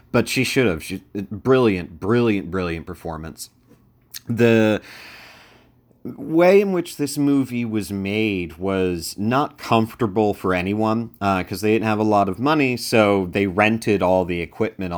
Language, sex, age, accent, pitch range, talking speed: English, male, 30-49, American, 90-110 Hz, 145 wpm